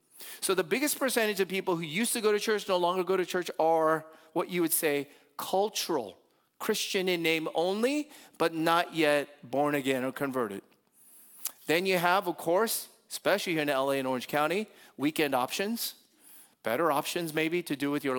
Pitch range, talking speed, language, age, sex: 135-180 Hz, 180 wpm, English, 40-59, male